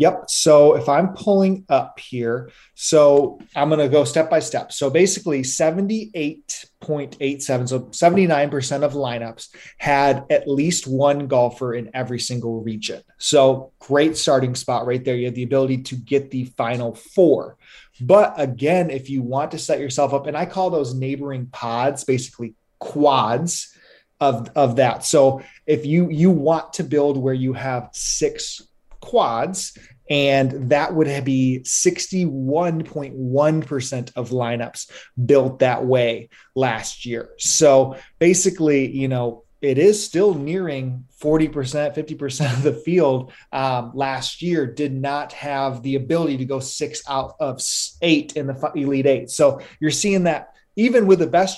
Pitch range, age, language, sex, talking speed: 130-155 Hz, 30-49, English, male, 150 wpm